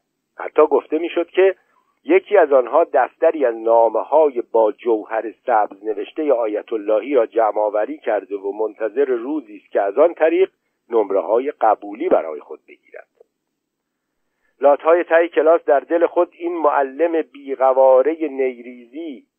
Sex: male